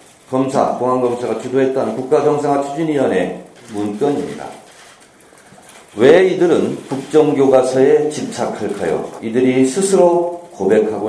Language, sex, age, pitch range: Korean, male, 40-59, 120-160 Hz